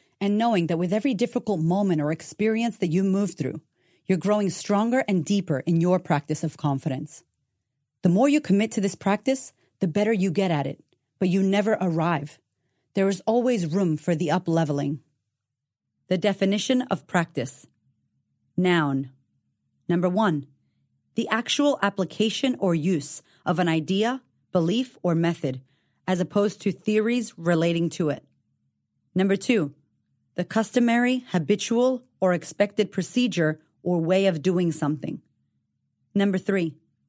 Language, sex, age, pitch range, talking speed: English, female, 30-49, 155-205 Hz, 140 wpm